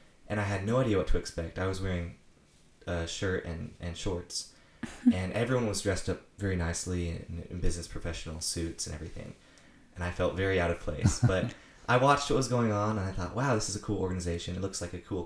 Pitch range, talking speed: 85-105 Hz, 230 wpm